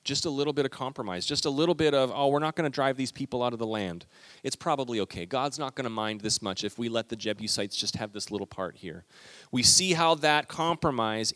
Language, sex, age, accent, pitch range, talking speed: English, male, 30-49, American, 110-145 Hz, 260 wpm